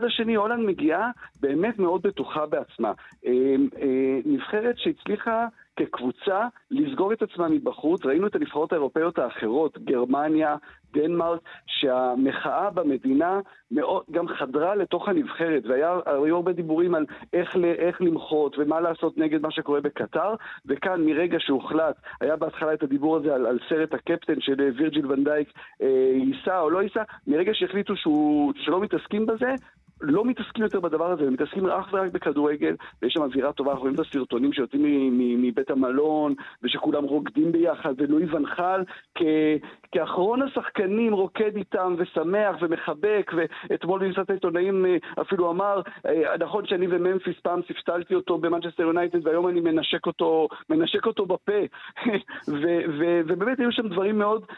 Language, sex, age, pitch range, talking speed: Hebrew, male, 50-69, 150-200 Hz, 145 wpm